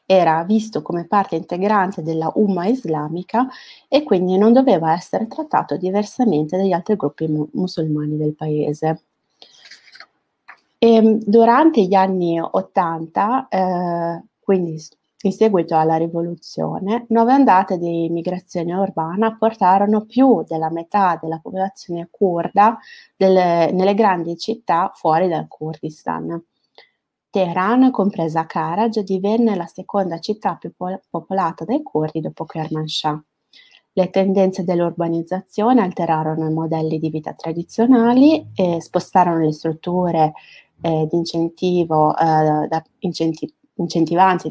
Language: Italian